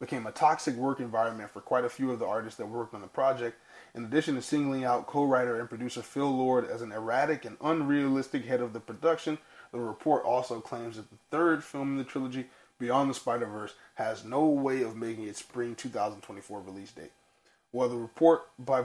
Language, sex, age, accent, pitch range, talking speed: English, male, 20-39, American, 120-145 Hz, 205 wpm